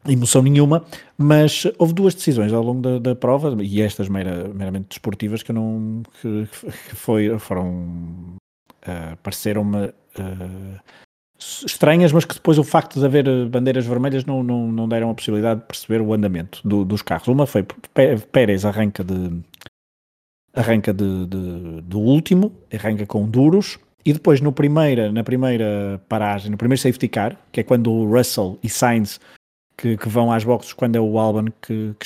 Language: Portuguese